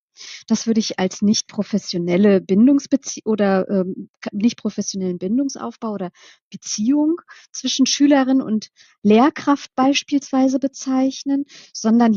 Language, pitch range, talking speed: German, 205-265 Hz, 105 wpm